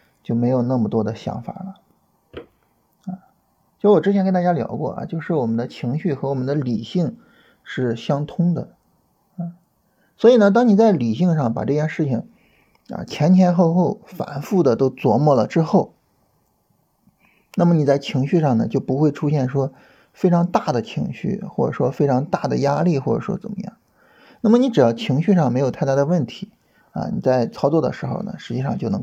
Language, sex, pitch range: Chinese, male, 130-190 Hz